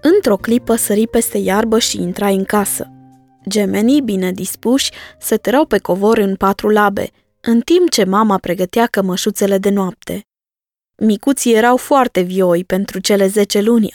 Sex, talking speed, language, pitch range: female, 145 wpm, Romanian, 195-250 Hz